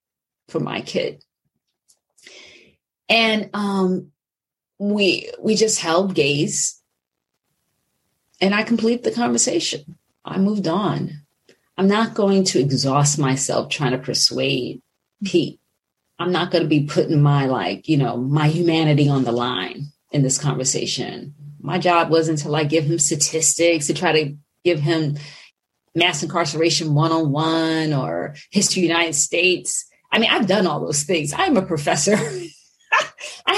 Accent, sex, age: American, female, 30-49